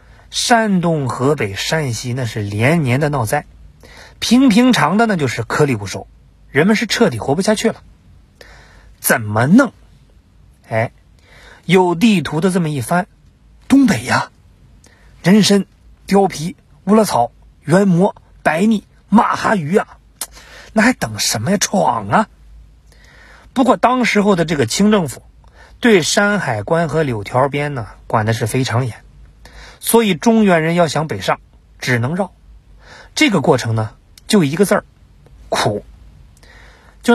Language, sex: Chinese, male